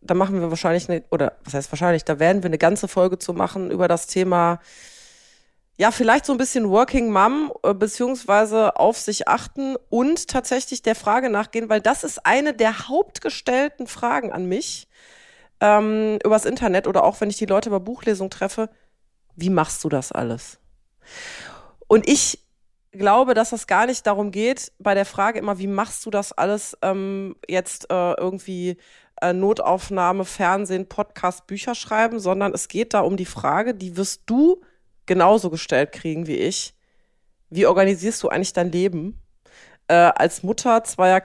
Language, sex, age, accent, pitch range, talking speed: German, female, 20-39, German, 185-230 Hz, 165 wpm